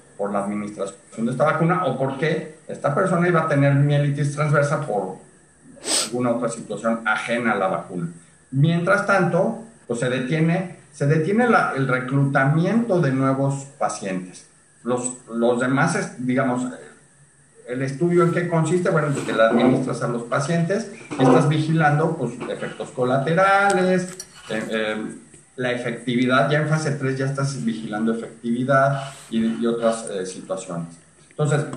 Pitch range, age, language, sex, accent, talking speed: 115-150 Hz, 40-59, Spanish, male, Mexican, 145 wpm